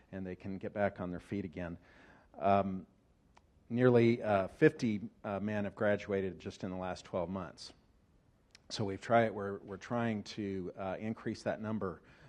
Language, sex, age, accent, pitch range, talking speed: English, male, 50-69, American, 95-110 Hz, 165 wpm